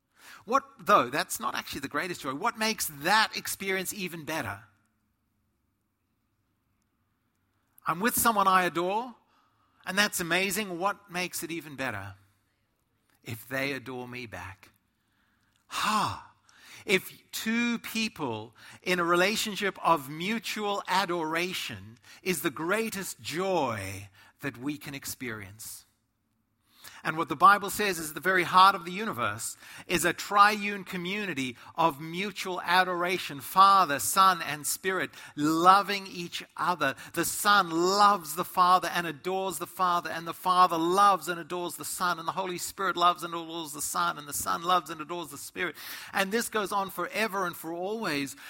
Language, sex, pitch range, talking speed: English, male, 140-190 Hz, 145 wpm